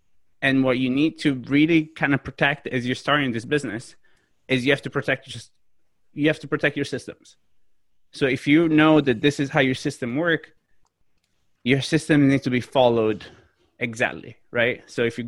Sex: male